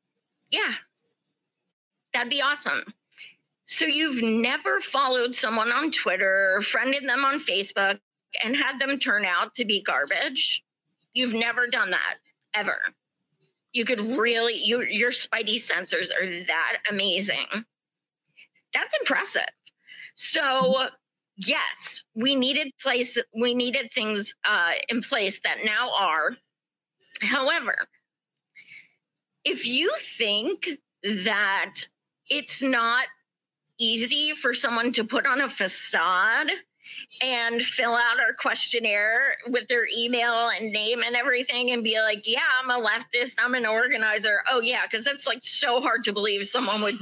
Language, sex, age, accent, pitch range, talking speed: English, female, 40-59, American, 215-270 Hz, 130 wpm